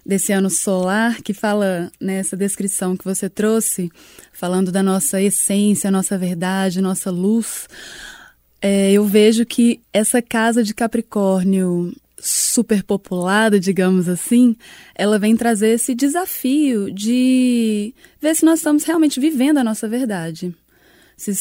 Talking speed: 130 wpm